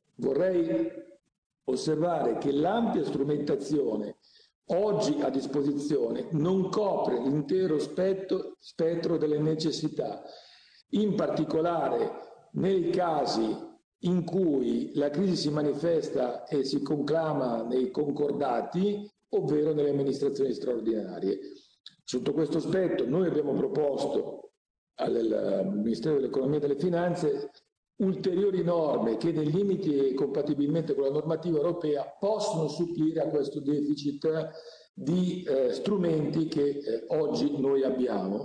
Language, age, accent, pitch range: Italian, 50-69, native, 145-185 Hz